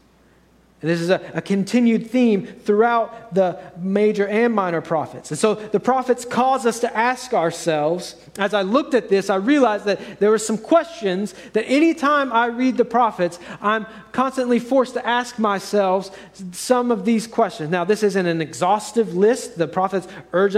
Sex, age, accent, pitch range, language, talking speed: male, 40-59, American, 190-240 Hz, English, 170 wpm